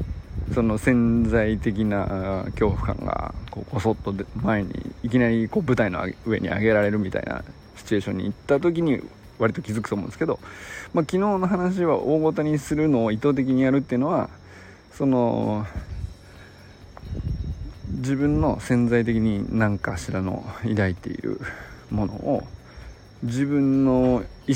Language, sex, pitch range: Japanese, male, 100-140 Hz